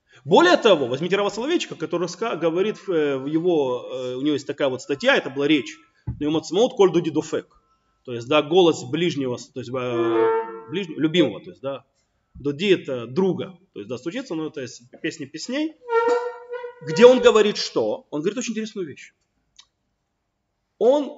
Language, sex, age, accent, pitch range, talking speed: Russian, male, 30-49, native, 145-210 Hz, 145 wpm